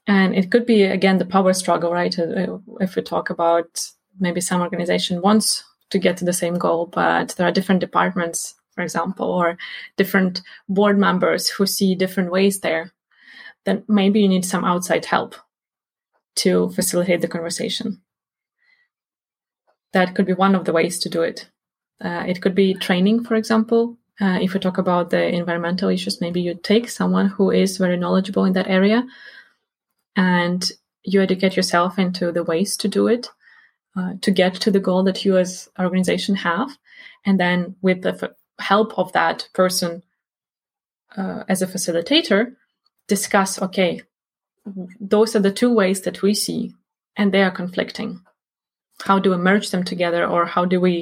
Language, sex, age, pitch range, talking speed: English, female, 20-39, 175-200 Hz, 170 wpm